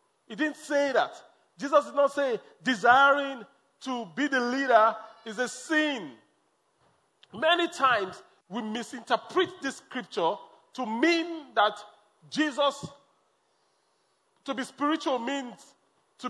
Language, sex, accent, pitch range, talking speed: English, male, Nigerian, 225-285 Hz, 115 wpm